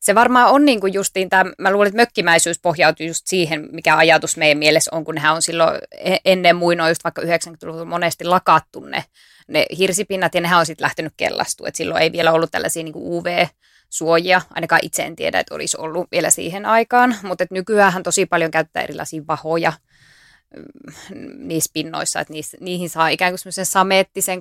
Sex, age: female, 20-39